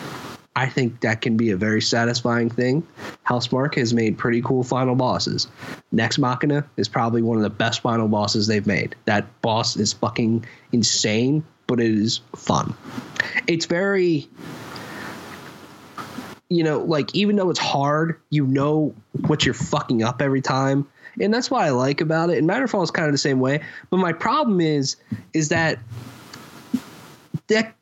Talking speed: 165 wpm